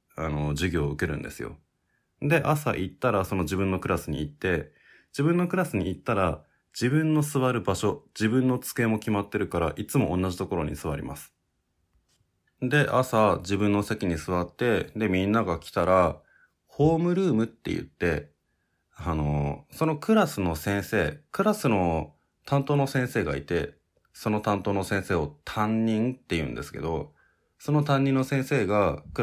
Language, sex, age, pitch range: Japanese, male, 20-39, 80-110 Hz